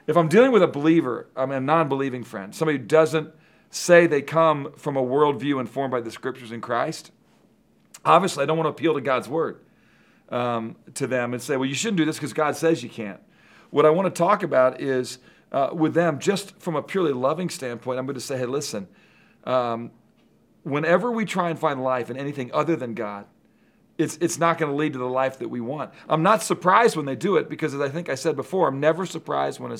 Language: English